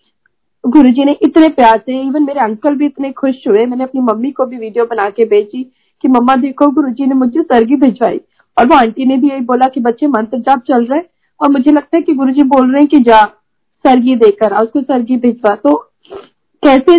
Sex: female